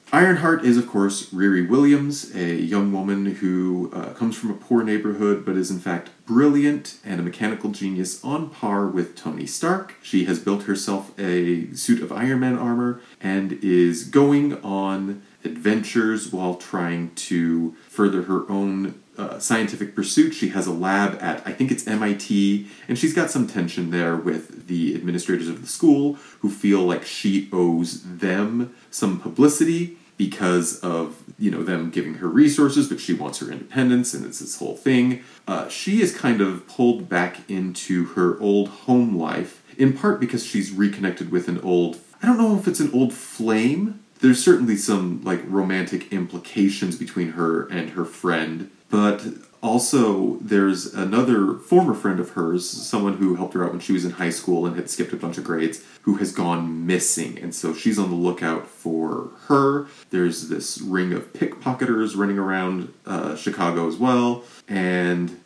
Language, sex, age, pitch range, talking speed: English, male, 30-49, 90-120 Hz, 175 wpm